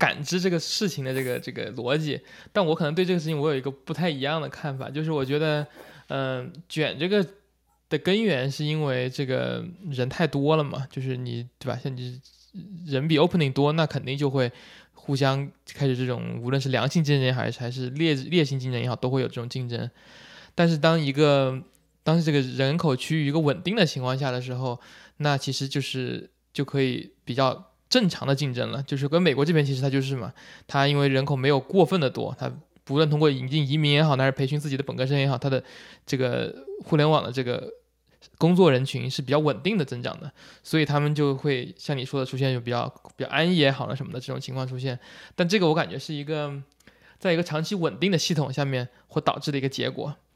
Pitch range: 130-160 Hz